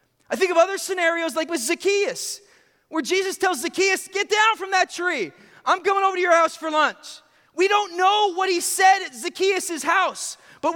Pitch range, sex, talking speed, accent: 290-365 Hz, male, 195 wpm, American